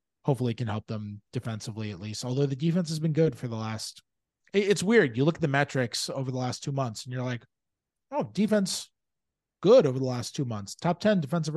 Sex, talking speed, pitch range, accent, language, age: male, 225 wpm, 115-170 Hz, American, English, 30-49